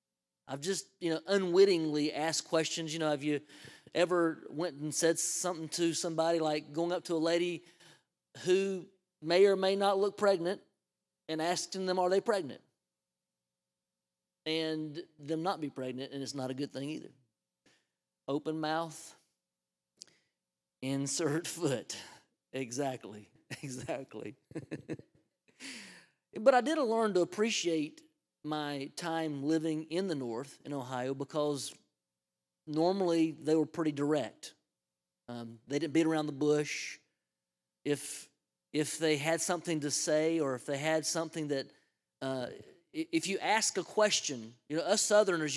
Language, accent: English, American